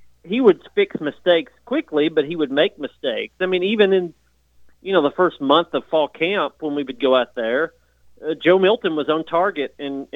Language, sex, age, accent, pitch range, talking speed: English, male, 40-59, American, 140-180 Hz, 215 wpm